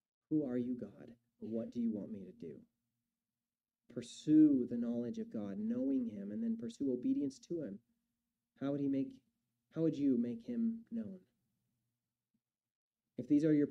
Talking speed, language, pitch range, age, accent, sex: 165 wpm, English, 120-155 Hz, 30-49, American, male